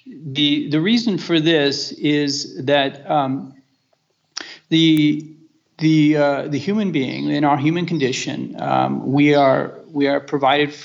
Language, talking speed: English, 135 wpm